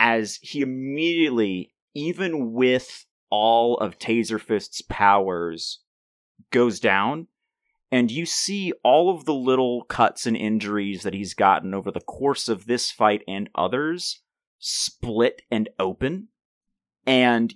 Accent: American